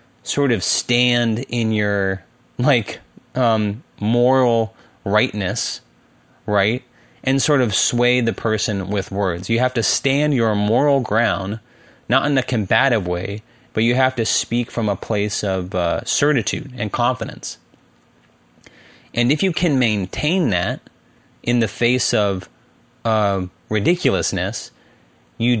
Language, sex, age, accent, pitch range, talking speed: English, male, 30-49, American, 100-120 Hz, 130 wpm